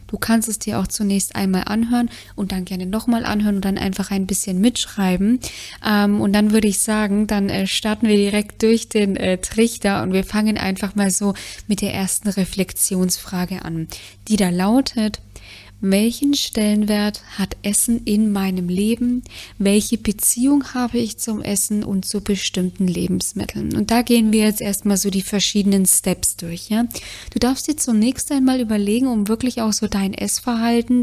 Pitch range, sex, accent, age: 195-225 Hz, female, German, 20-39